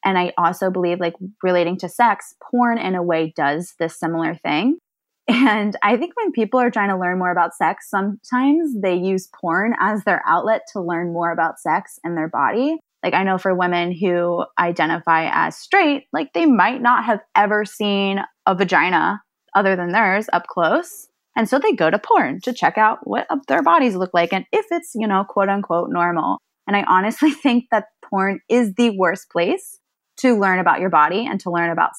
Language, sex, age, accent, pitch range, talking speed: English, female, 20-39, American, 175-230 Hz, 200 wpm